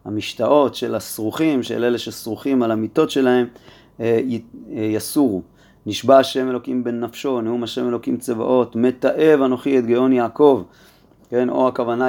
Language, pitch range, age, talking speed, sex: Hebrew, 110-135 Hz, 30-49, 135 wpm, male